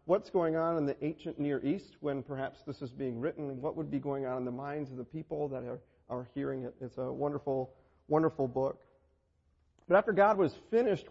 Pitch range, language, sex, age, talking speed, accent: 120-150 Hz, English, male, 40-59, 215 wpm, American